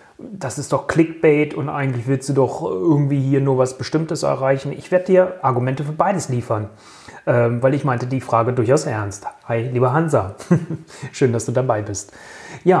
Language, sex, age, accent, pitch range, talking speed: German, male, 30-49, German, 125-155 Hz, 180 wpm